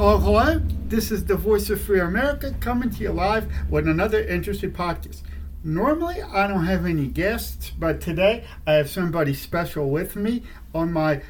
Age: 50-69